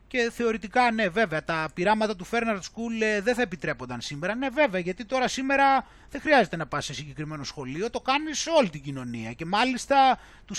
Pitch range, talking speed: 155-230 Hz, 200 wpm